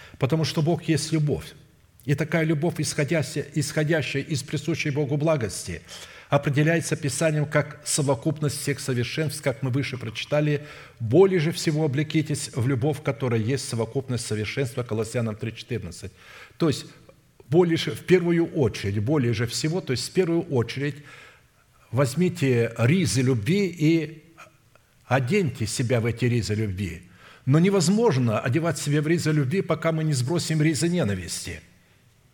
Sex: male